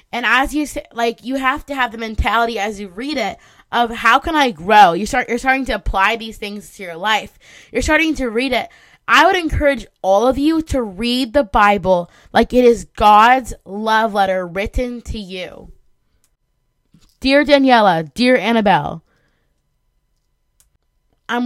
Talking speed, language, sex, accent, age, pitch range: 170 wpm, English, female, American, 20-39, 205-255 Hz